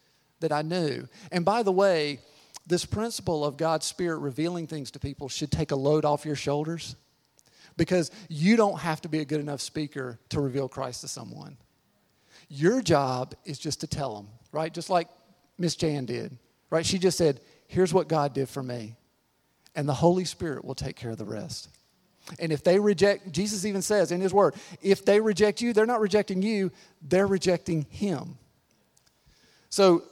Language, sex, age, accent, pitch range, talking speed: English, male, 40-59, American, 145-185 Hz, 185 wpm